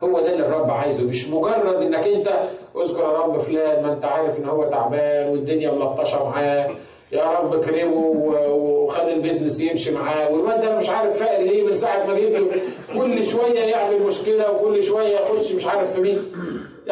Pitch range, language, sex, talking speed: 150-215 Hz, Arabic, male, 180 wpm